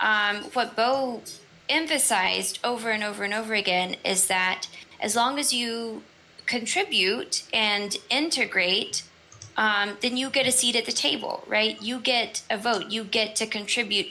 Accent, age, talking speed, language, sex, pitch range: American, 10-29, 155 wpm, English, female, 200-235 Hz